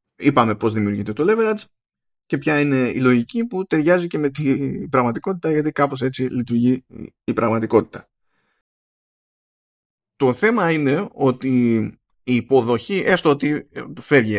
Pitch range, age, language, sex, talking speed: 115-155 Hz, 20-39, Greek, male, 130 wpm